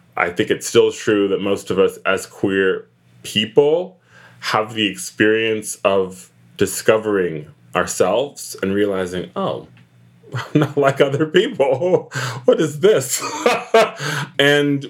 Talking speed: 120 wpm